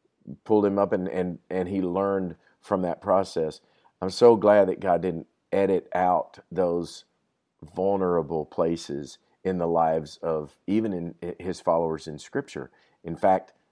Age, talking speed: 50-69, 150 wpm